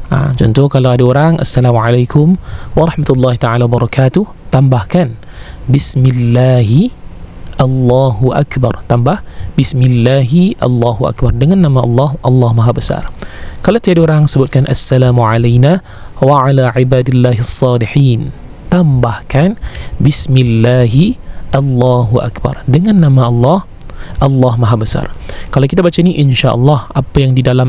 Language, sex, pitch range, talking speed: Malay, male, 120-140 Hz, 115 wpm